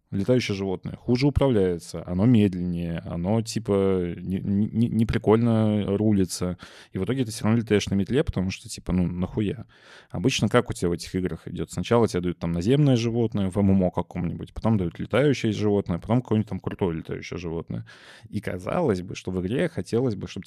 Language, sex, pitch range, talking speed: Russian, male, 90-110 Hz, 185 wpm